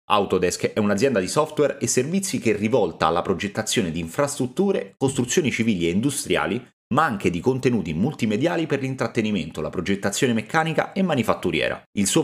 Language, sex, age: Italian, male, 30-49